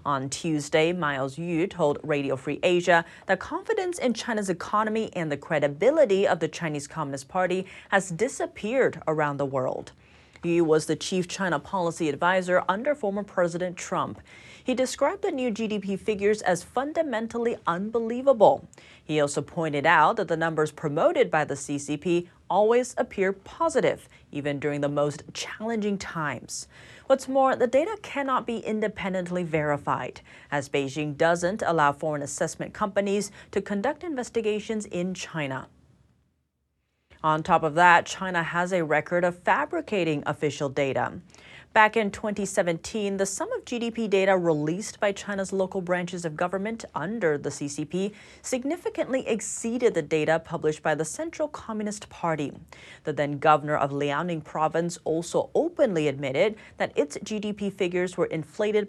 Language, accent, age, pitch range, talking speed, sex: English, American, 30-49, 155-215 Hz, 145 wpm, female